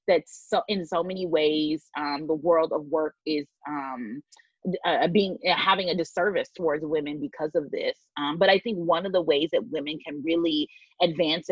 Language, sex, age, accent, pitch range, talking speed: English, female, 30-49, American, 155-195 Hz, 195 wpm